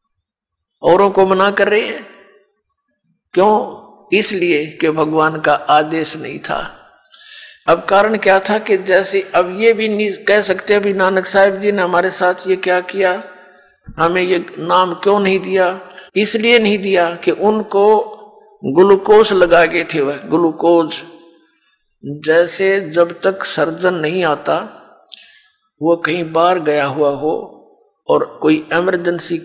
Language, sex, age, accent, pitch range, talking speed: Hindi, male, 50-69, native, 170-200 Hz, 135 wpm